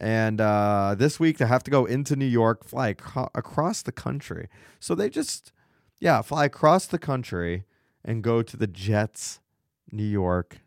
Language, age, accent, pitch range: English, 30-49, American, 105-135 Hz